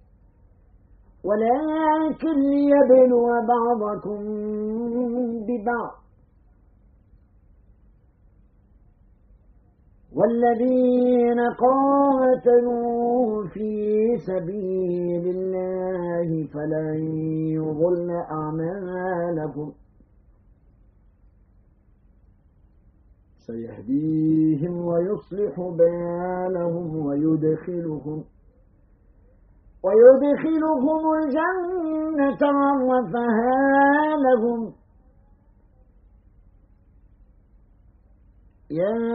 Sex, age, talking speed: male, 50-69, 30 wpm